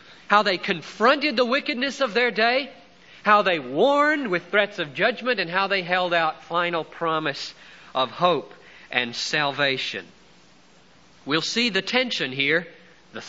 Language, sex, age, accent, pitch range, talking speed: English, male, 50-69, American, 150-205 Hz, 145 wpm